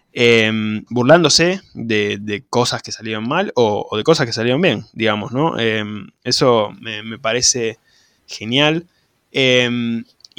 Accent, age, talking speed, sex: Argentinian, 20-39, 140 wpm, male